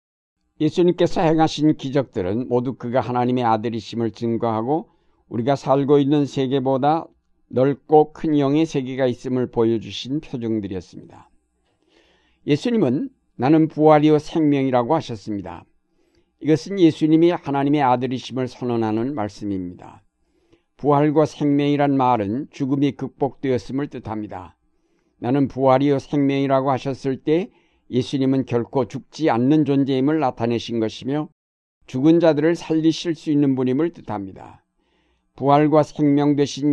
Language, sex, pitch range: Korean, male, 120-150 Hz